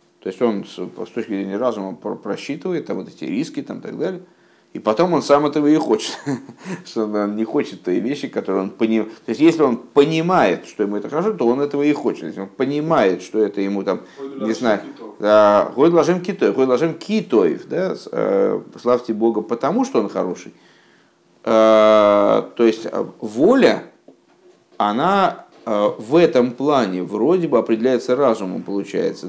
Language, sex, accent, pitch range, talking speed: Russian, male, native, 110-150 Hz, 155 wpm